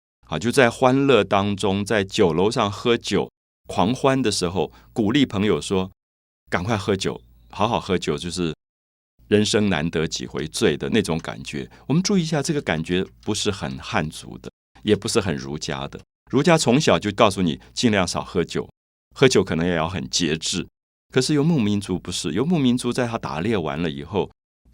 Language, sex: Chinese, male